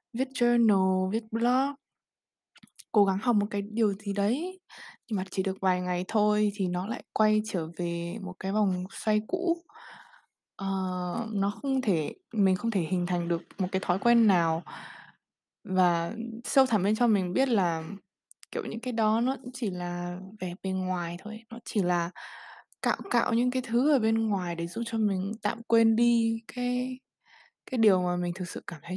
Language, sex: Vietnamese, female